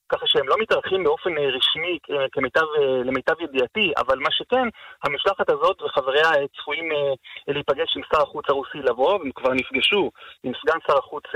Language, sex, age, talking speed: Hebrew, male, 30-49, 150 wpm